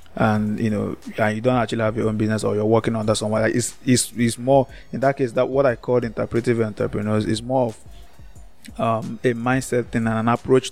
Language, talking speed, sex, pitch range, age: English, 220 wpm, male, 110-135 Hz, 20-39